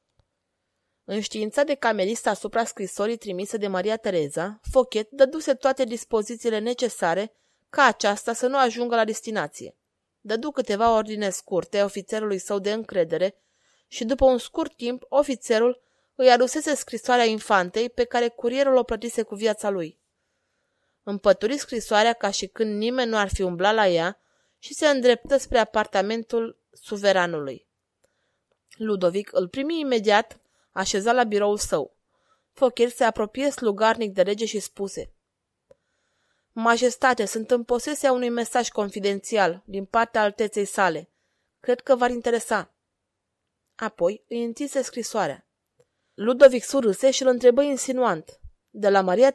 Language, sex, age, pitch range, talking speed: Romanian, female, 20-39, 200-250 Hz, 135 wpm